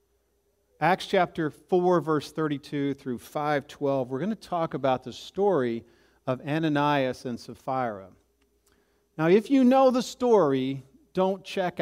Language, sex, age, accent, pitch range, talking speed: English, male, 40-59, American, 140-215 Hz, 130 wpm